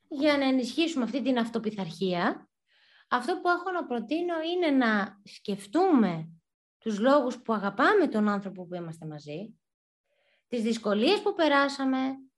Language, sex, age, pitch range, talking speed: Greek, female, 20-39, 215-320 Hz, 130 wpm